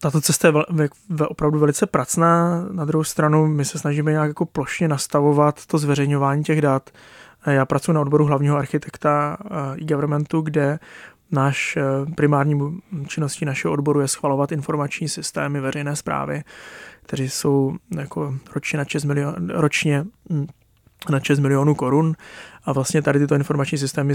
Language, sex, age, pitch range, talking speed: Czech, male, 20-39, 140-150 Hz, 140 wpm